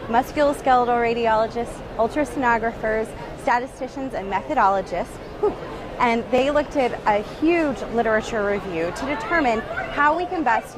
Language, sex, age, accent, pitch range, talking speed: English, female, 20-39, American, 215-270 Hz, 110 wpm